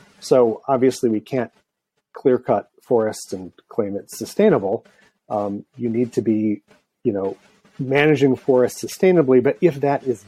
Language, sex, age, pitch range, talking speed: English, male, 40-59, 105-130 Hz, 140 wpm